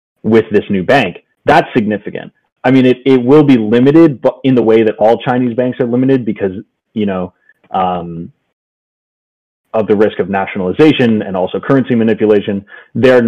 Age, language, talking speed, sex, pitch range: 30-49, English, 165 wpm, male, 90-125 Hz